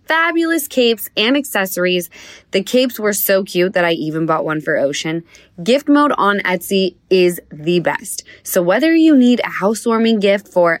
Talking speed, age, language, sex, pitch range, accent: 170 wpm, 20-39, English, female, 170-250 Hz, American